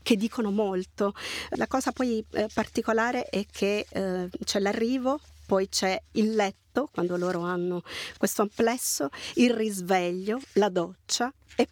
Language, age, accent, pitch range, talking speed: Italian, 40-59, native, 190-235 Hz, 140 wpm